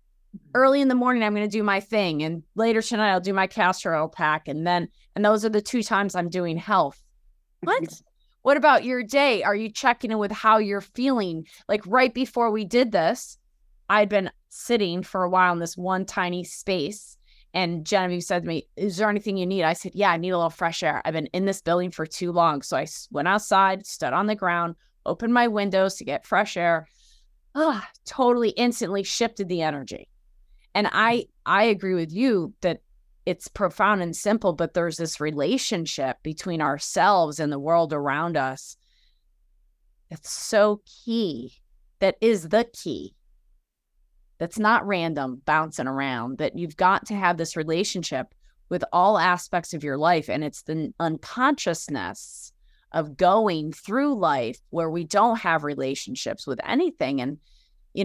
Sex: female